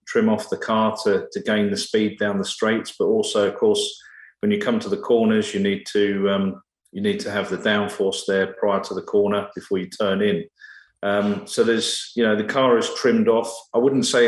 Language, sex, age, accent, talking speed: English, male, 40-59, British, 225 wpm